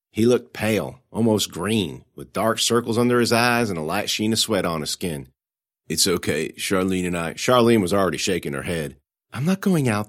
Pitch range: 85-125 Hz